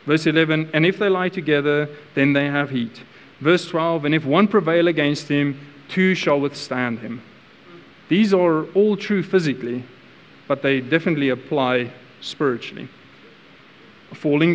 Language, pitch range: English, 125-160 Hz